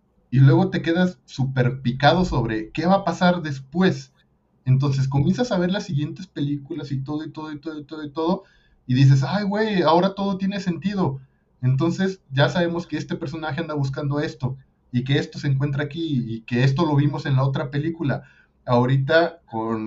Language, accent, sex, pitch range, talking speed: Spanish, Mexican, male, 120-150 Hz, 185 wpm